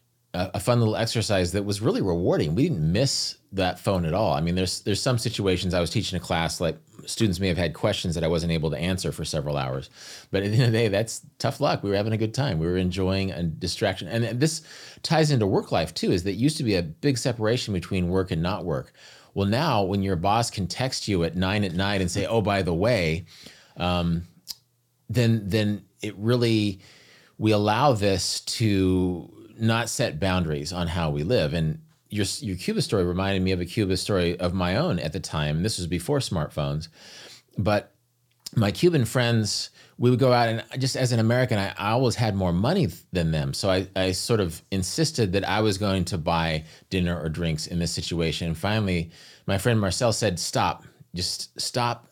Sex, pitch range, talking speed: male, 90-115 Hz, 215 wpm